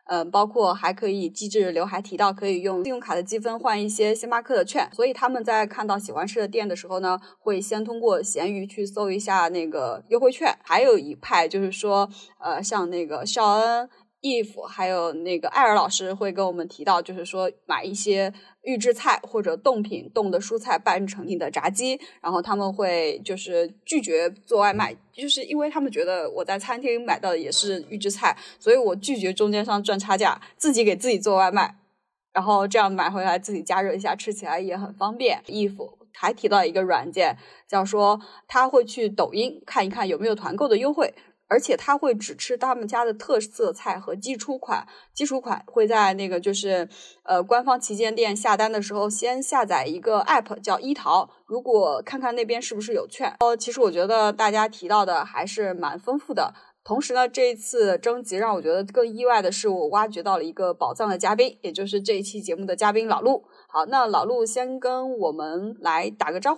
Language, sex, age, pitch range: Chinese, female, 20-39, 195-250 Hz